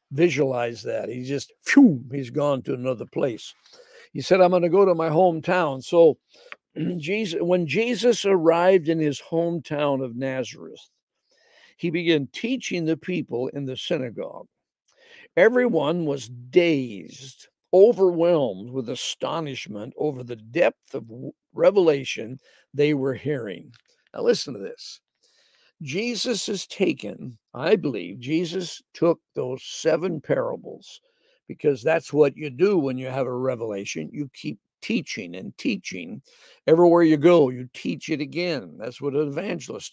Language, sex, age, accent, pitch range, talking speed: English, male, 60-79, American, 140-200 Hz, 135 wpm